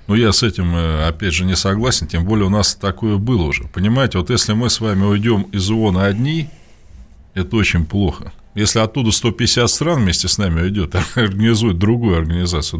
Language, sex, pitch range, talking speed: Russian, male, 90-120 Hz, 190 wpm